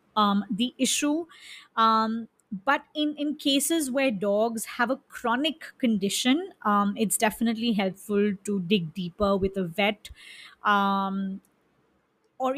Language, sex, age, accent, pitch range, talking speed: English, female, 30-49, Indian, 200-235 Hz, 125 wpm